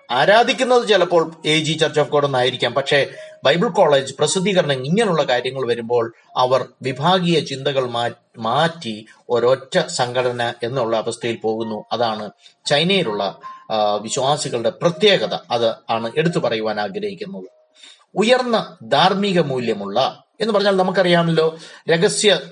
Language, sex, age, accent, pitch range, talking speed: Malayalam, male, 30-49, native, 125-185 Hz, 100 wpm